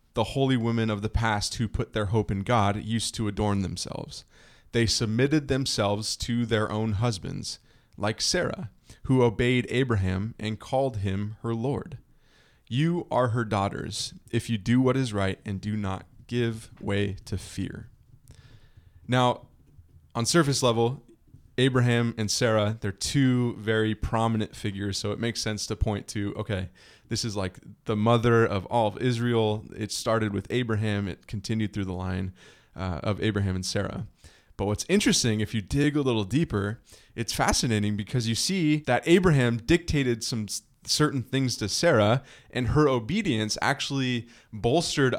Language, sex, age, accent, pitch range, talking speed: English, male, 20-39, American, 105-125 Hz, 160 wpm